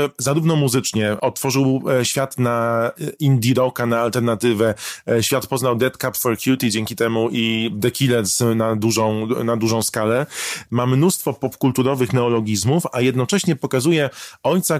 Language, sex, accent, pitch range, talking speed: Polish, male, native, 115-140 Hz, 130 wpm